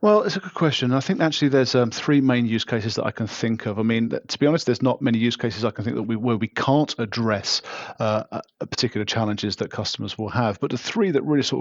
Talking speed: 265 wpm